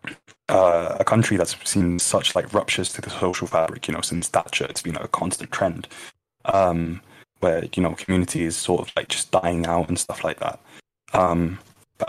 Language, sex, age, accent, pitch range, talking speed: English, male, 20-39, British, 90-100 Hz, 190 wpm